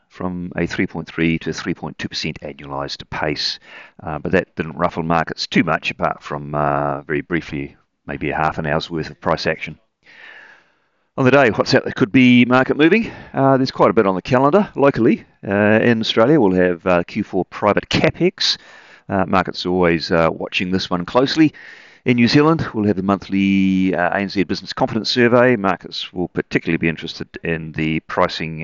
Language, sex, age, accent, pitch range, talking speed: English, male, 40-59, British, 80-105 Hz, 180 wpm